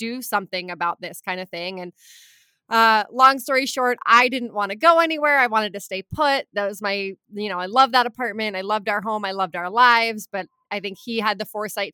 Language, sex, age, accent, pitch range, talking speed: English, female, 20-39, American, 190-235 Hz, 235 wpm